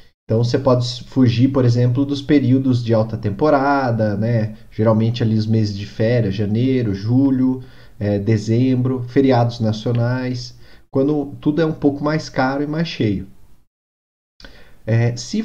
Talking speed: 130 wpm